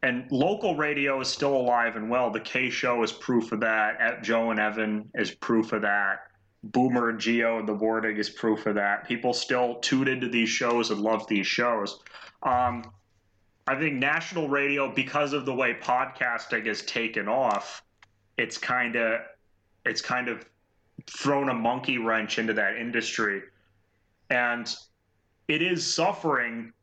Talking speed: 165 wpm